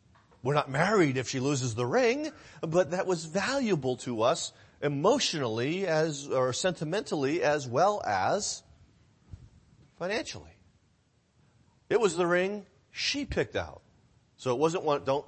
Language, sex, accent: English, male, American